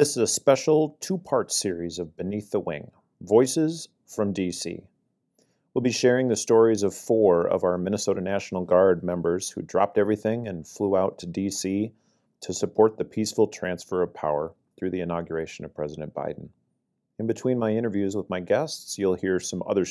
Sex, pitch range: male, 90-110 Hz